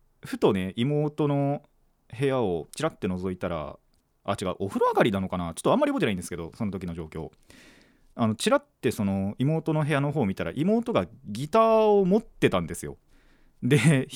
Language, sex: Japanese, male